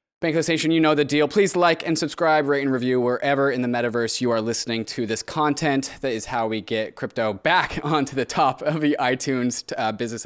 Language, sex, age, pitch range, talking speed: English, male, 20-39, 115-155 Hz, 220 wpm